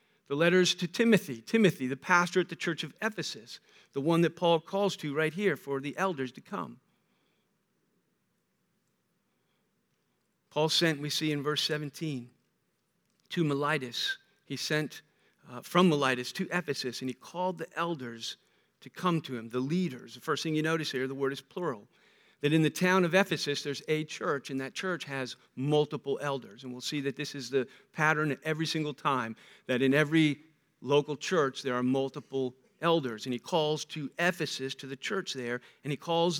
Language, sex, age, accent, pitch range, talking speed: English, male, 50-69, American, 135-185 Hz, 180 wpm